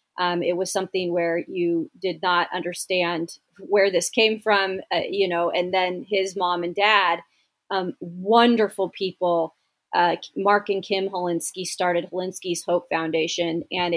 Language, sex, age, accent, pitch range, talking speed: English, female, 30-49, American, 175-195 Hz, 150 wpm